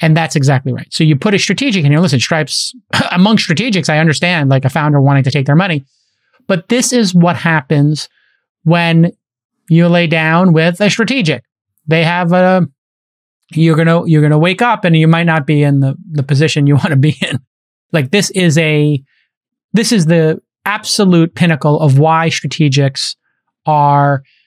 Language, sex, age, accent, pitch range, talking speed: English, male, 30-49, American, 150-185 Hz, 180 wpm